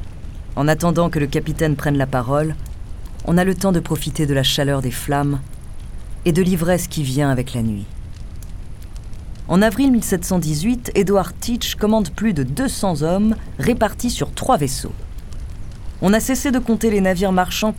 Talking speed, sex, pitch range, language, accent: 165 wpm, female, 140-200 Hz, French, French